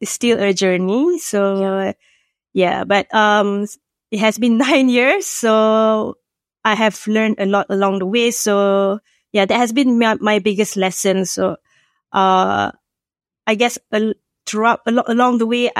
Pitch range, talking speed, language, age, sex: 195-235 Hz, 165 wpm, English, 20-39, female